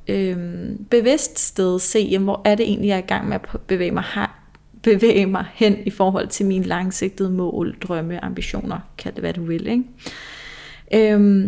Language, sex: Danish, female